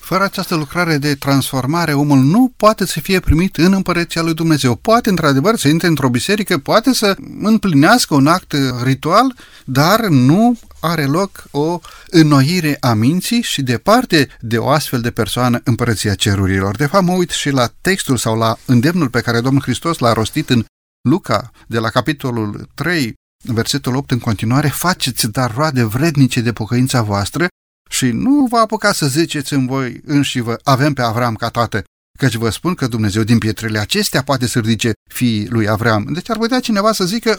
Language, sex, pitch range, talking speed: Romanian, male, 120-180 Hz, 180 wpm